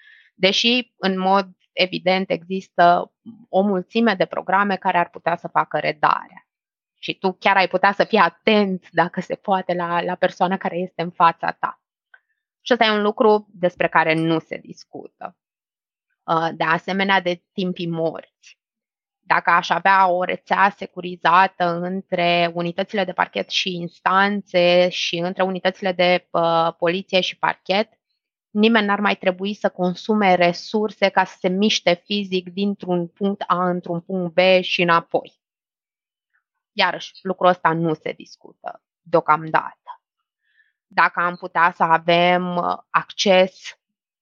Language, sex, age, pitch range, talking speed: Romanian, female, 20-39, 170-200 Hz, 135 wpm